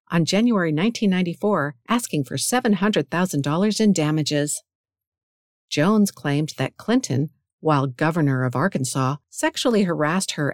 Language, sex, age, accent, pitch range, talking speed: English, female, 50-69, American, 145-200 Hz, 110 wpm